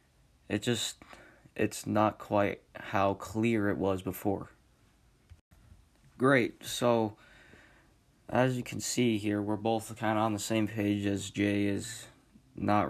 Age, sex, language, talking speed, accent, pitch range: 20-39, male, English, 135 wpm, American, 100-115 Hz